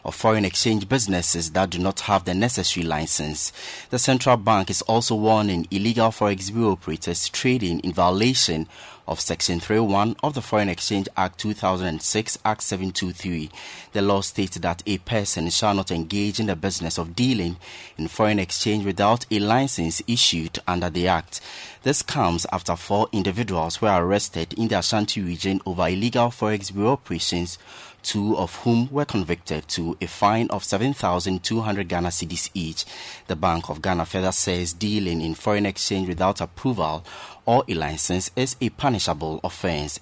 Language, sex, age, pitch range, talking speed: English, male, 30-49, 85-105 Hz, 160 wpm